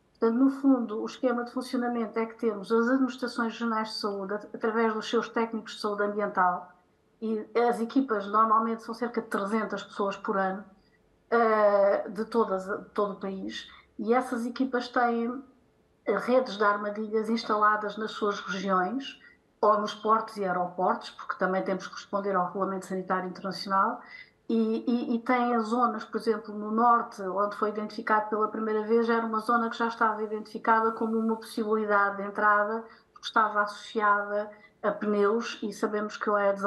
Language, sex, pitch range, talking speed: Portuguese, female, 205-230 Hz, 165 wpm